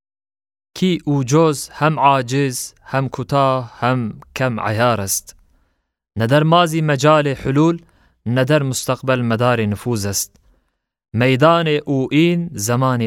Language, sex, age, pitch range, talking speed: Turkish, male, 20-39, 110-155 Hz, 105 wpm